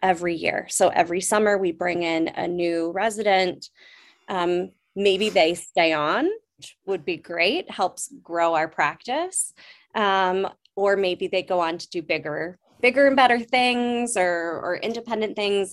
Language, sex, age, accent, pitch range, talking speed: English, female, 20-39, American, 170-215 Hz, 155 wpm